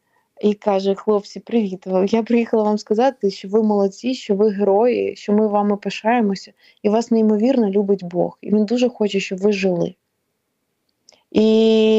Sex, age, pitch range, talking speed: female, 20-39, 200-225 Hz, 155 wpm